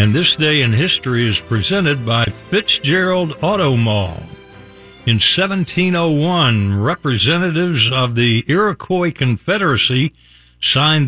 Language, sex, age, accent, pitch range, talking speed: English, male, 60-79, American, 105-145 Hz, 105 wpm